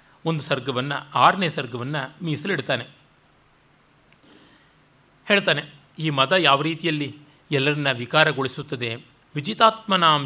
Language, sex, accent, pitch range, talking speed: Kannada, male, native, 135-195 Hz, 75 wpm